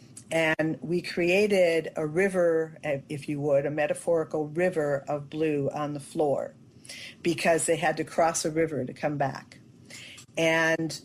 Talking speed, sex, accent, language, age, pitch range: 145 wpm, female, American, English, 50-69, 150-185 Hz